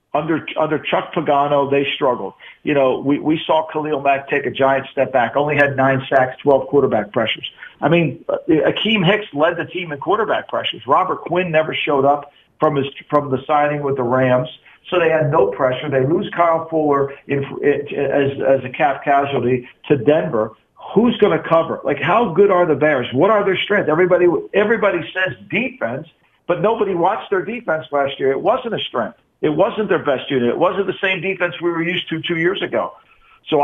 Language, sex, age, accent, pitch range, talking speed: English, male, 50-69, American, 140-175 Hz, 200 wpm